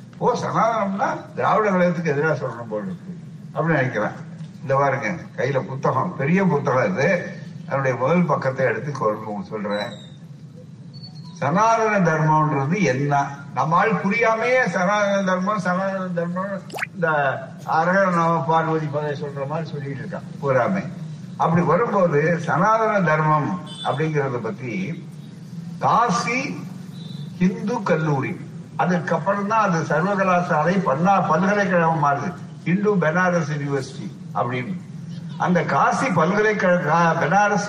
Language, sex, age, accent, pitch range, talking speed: Tamil, male, 60-79, native, 150-180 Hz, 95 wpm